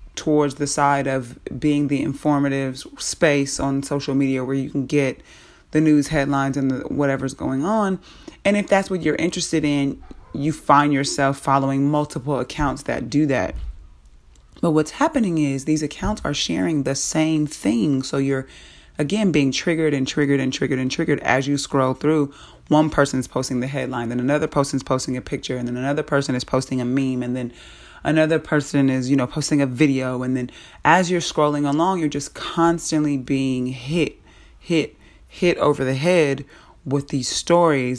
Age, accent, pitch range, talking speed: 30-49, American, 130-150 Hz, 175 wpm